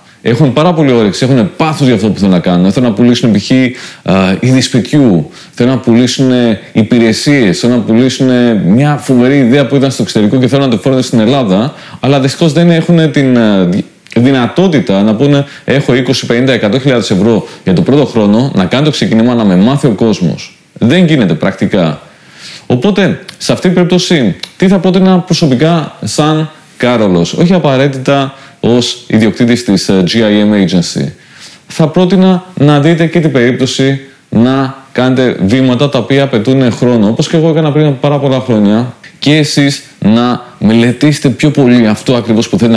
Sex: male